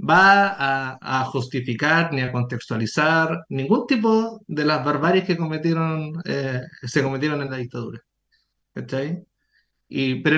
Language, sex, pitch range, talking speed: Spanish, male, 140-180 Hz, 145 wpm